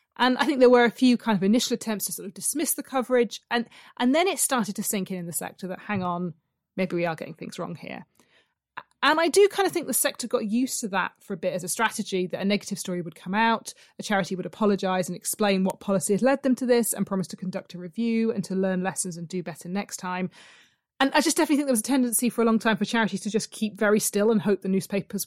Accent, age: British, 30-49